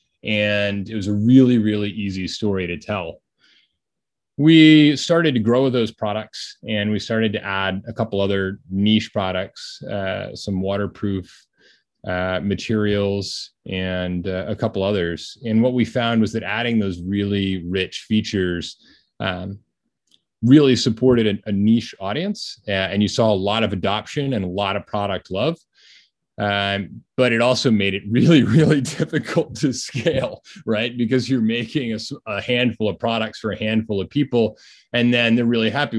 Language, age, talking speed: English, 30-49, 160 wpm